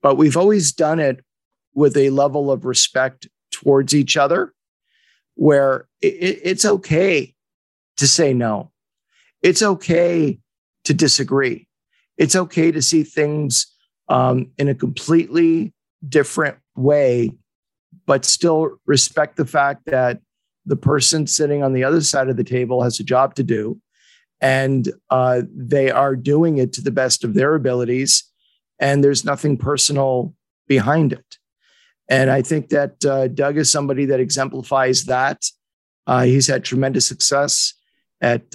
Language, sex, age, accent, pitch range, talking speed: English, male, 50-69, American, 130-150 Hz, 140 wpm